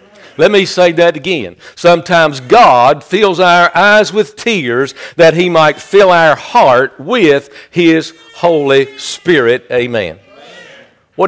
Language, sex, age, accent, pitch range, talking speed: English, male, 50-69, American, 155-195 Hz, 130 wpm